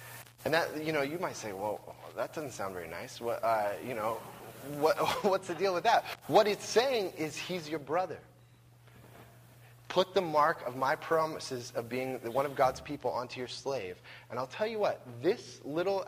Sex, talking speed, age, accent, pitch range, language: male, 190 wpm, 20-39, American, 120-150 Hz, English